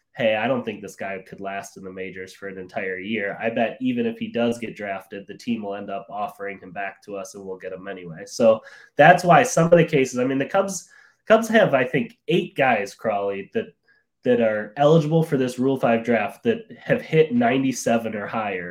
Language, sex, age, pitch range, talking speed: English, male, 20-39, 110-165 Hz, 230 wpm